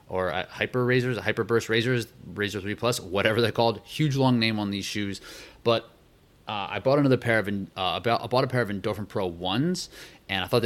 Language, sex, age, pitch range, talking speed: English, male, 30-49, 95-120 Hz, 230 wpm